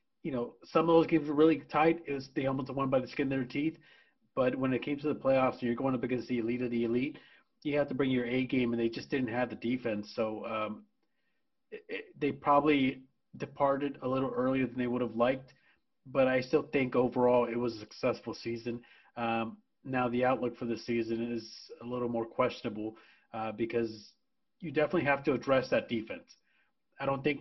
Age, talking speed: 30-49, 220 wpm